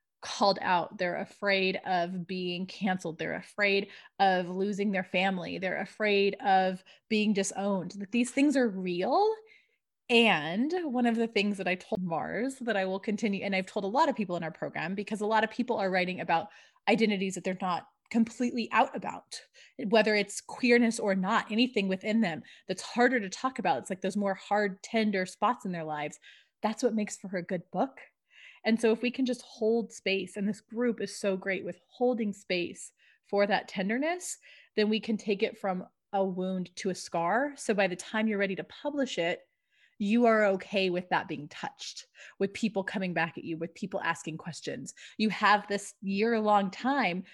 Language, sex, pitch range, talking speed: English, female, 185-225 Hz, 195 wpm